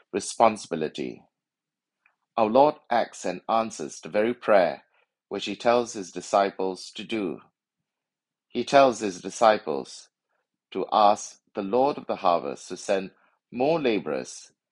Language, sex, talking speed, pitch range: English, male, 125 wpm, 90-115 Hz